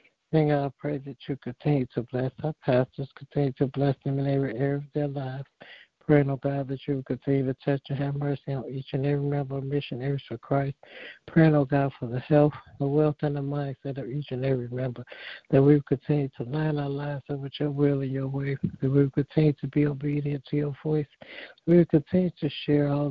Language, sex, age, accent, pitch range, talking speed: English, male, 60-79, American, 140-150 Hz, 215 wpm